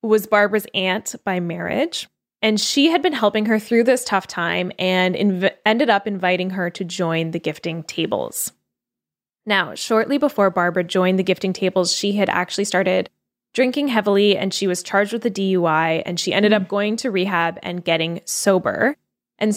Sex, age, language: female, 10-29, English